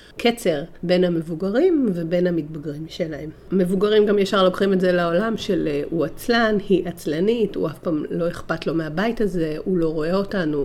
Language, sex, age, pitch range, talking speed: Hebrew, female, 40-59, 160-185 Hz, 170 wpm